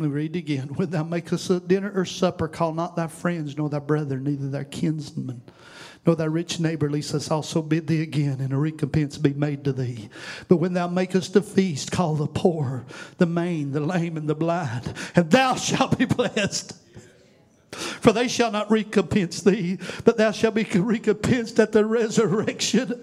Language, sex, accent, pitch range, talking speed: English, male, American, 185-250 Hz, 185 wpm